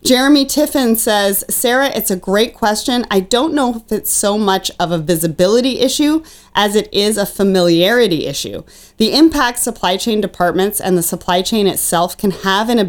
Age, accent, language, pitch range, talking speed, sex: 30-49, American, English, 180-240 Hz, 180 wpm, female